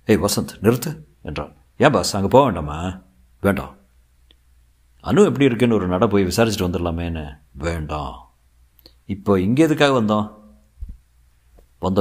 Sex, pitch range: male, 85-110 Hz